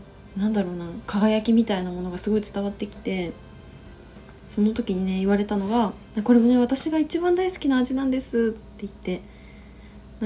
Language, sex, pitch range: Japanese, female, 200-255 Hz